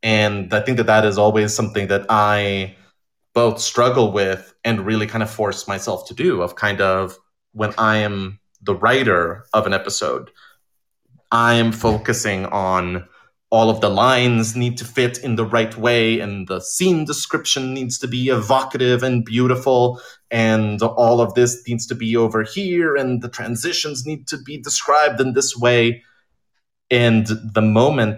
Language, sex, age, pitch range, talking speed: English, male, 30-49, 100-125 Hz, 170 wpm